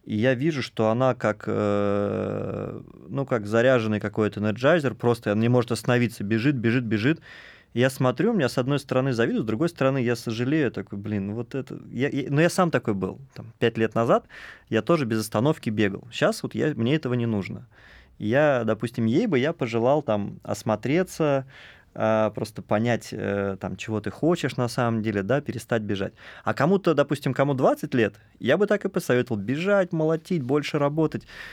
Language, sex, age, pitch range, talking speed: Russian, male, 20-39, 110-140 Hz, 180 wpm